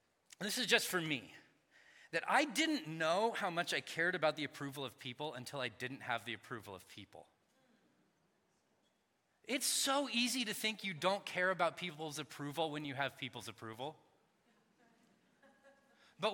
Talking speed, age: 160 wpm, 20-39